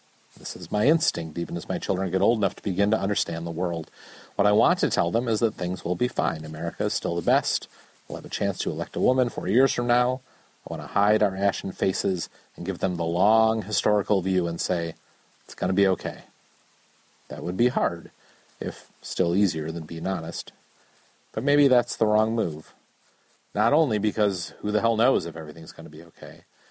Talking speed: 215 wpm